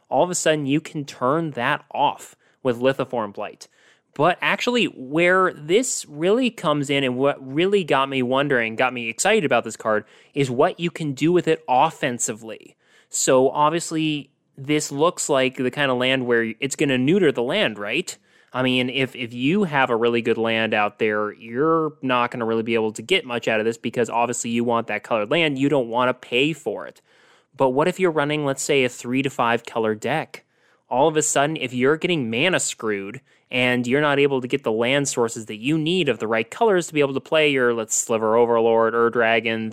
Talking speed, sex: 215 wpm, male